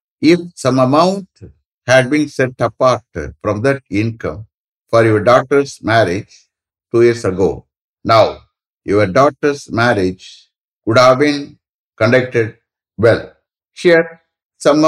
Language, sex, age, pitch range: English, male, 60-79, 110-145 Hz